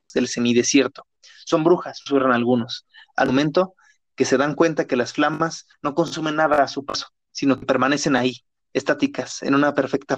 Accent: Mexican